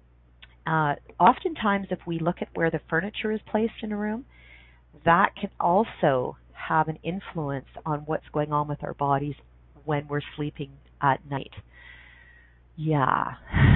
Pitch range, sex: 135-165 Hz, female